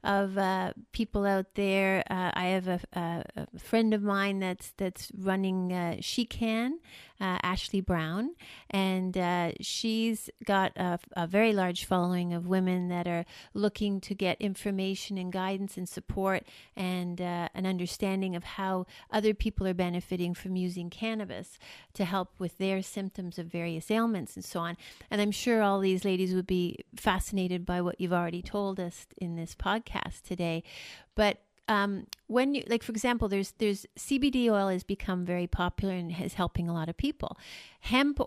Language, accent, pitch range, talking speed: English, American, 175-205 Hz, 170 wpm